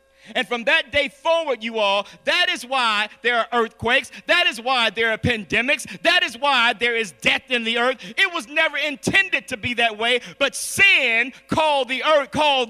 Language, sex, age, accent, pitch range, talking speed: English, male, 50-69, American, 200-290 Hz, 200 wpm